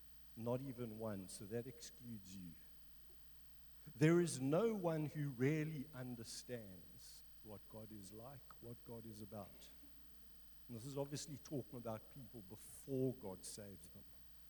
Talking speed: 135 wpm